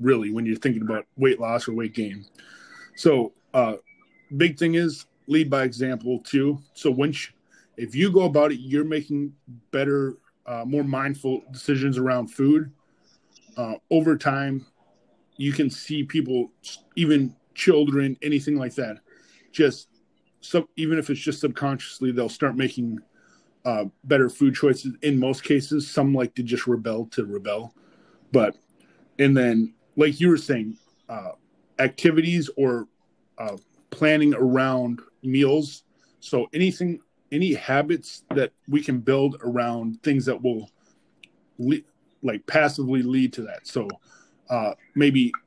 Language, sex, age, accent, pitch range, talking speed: English, male, 30-49, American, 125-150 Hz, 135 wpm